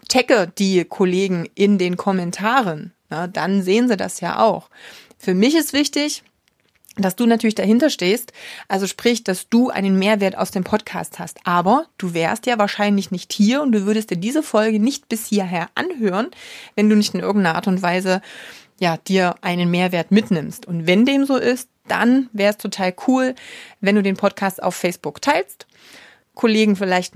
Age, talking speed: 30-49, 175 wpm